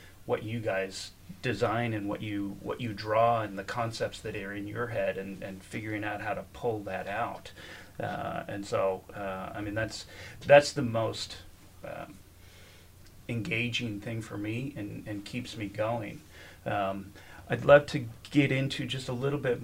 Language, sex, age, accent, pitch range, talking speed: English, male, 30-49, American, 100-125 Hz, 175 wpm